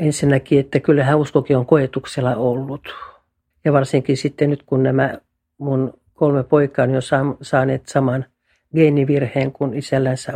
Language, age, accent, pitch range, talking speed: Finnish, 60-79, native, 130-150 Hz, 135 wpm